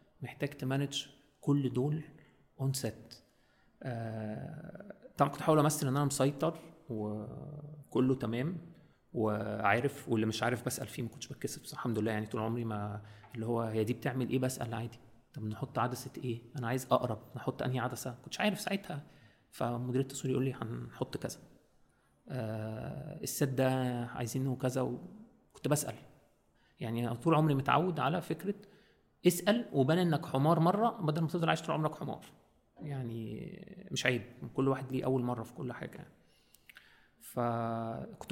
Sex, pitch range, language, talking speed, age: male, 120-150 Hz, Arabic, 150 wpm, 30-49